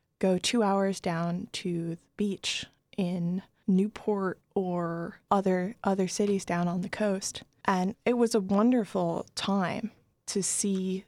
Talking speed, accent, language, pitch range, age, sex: 135 wpm, American, English, 185-225 Hz, 20-39, female